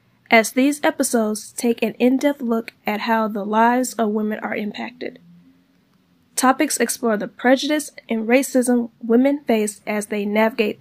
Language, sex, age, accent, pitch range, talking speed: English, female, 10-29, American, 215-260 Hz, 145 wpm